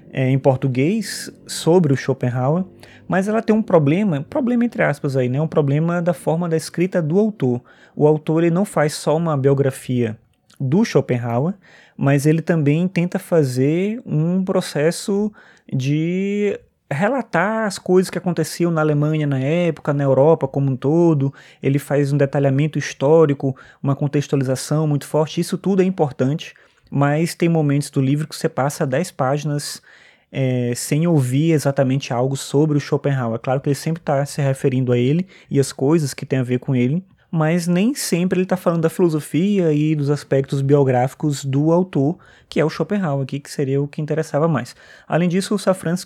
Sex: male